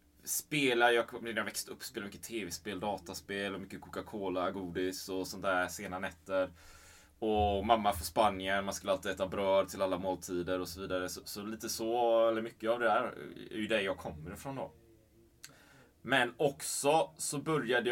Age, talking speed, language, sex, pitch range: 20-39, 180 wpm, Swedish, male, 95-120 Hz